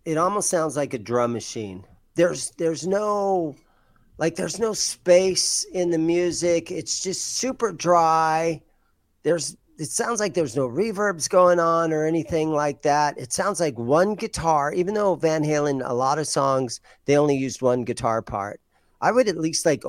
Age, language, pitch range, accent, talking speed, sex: 40-59, English, 115-170 Hz, American, 175 wpm, male